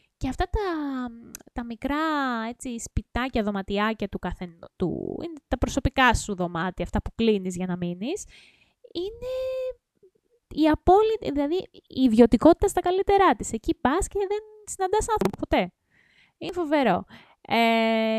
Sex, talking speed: female, 130 wpm